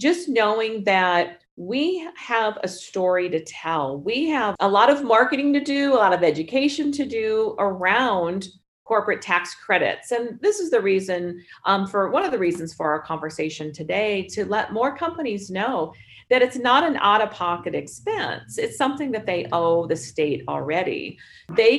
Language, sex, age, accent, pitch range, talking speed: English, female, 40-59, American, 175-265 Hz, 170 wpm